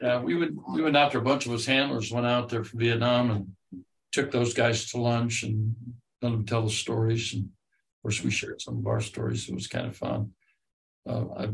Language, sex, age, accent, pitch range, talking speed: English, male, 60-79, American, 105-125 Hz, 225 wpm